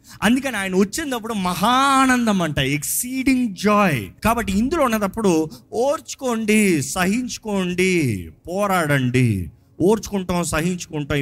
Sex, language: male, Telugu